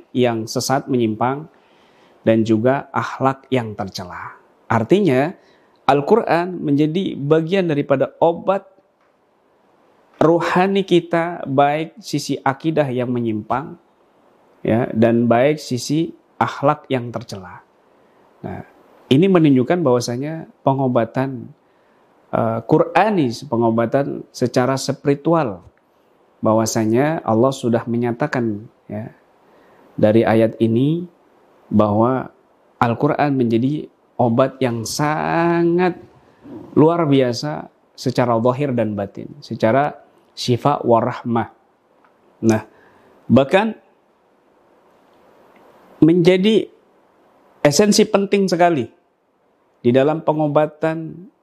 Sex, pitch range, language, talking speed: male, 120-165 Hz, Indonesian, 80 wpm